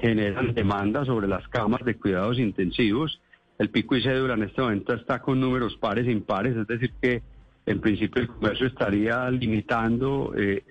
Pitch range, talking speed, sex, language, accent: 105-130 Hz, 175 wpm, male, Spanish, Colombian